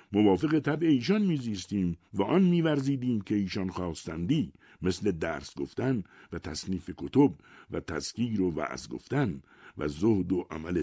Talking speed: 140 wpm